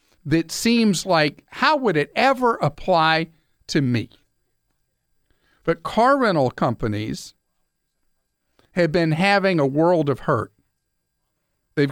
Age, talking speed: 50-69, 110 wpm